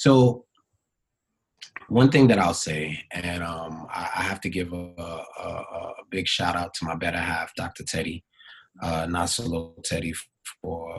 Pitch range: 90-125 Hz